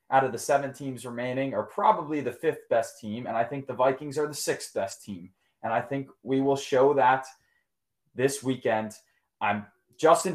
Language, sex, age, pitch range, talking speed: English, male, 20-39, 105-135 Hz, 190 wpm